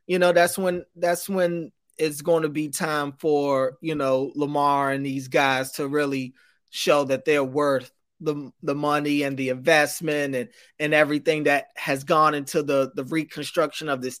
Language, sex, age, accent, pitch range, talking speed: English, male, 20-39, American, 145-165 Hz, 175 wpm